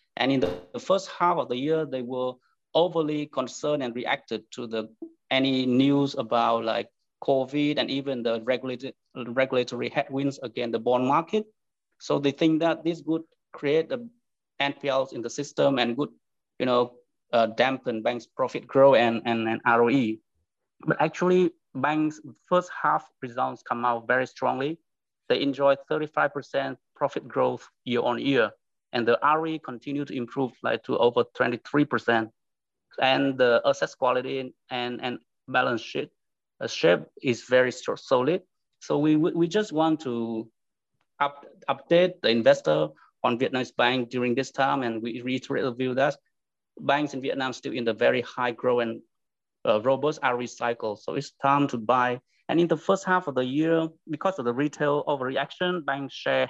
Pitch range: 125-155 Hz